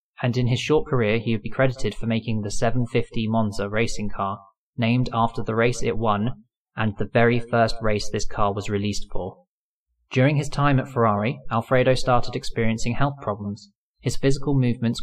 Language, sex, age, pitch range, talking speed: English, male, 20-39, 105-125 Hz, 180 wpm